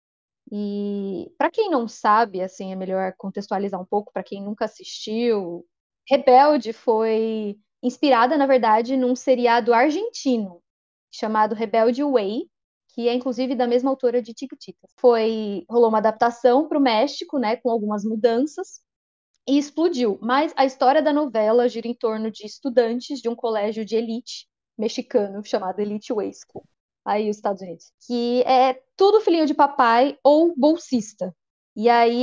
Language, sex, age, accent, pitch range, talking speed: Portuguese, female, 20-39, Brazilian, 215-260 Hz, 150 wpm